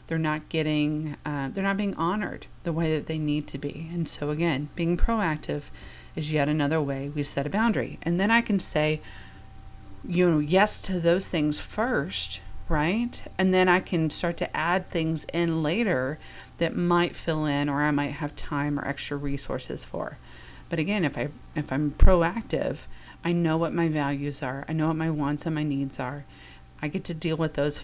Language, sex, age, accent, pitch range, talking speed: English, female, 30-49, American, 145-180 Hz, 200 wpm